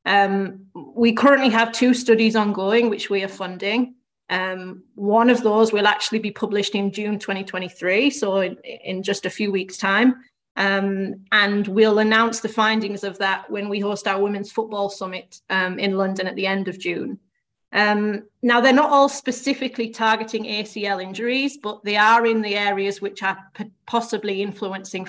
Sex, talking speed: female, 170 wpm